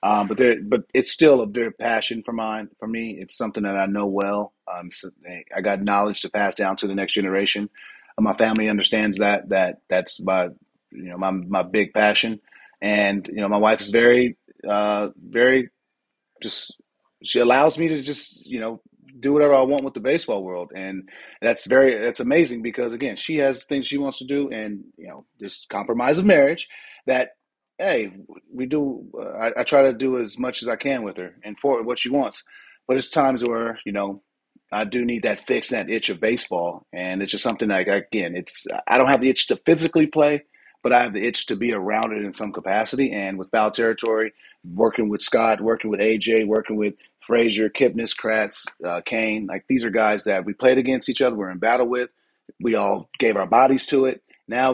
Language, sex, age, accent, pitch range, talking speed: English, male, 30-49, American, 105-130 Hz, 215 wpm